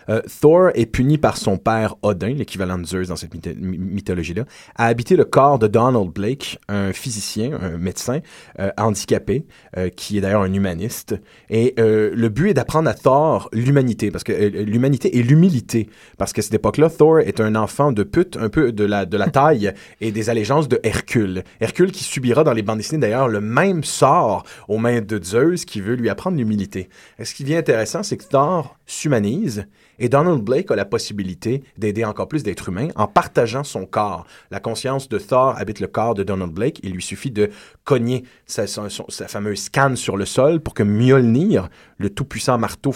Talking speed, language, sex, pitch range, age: 200 wpm, French, male, 100-130 Hz, 30-49